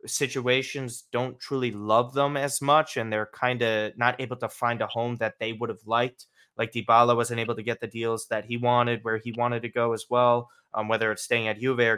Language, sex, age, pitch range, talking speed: English, male, 20-39, 110-130 Hz, 235 wpm